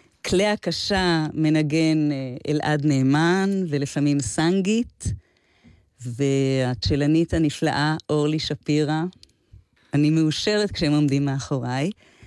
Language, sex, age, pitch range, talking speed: Hebrew, female, 30-49, 150-190 Hz, 80 wpm